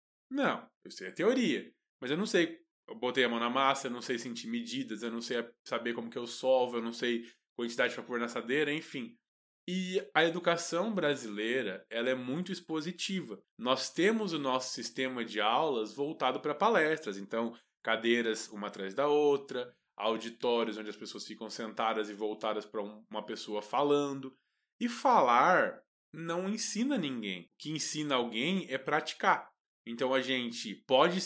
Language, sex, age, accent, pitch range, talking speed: Portuguese, male, 20-39, Brazilian, 115-170 Hz, 170 wpm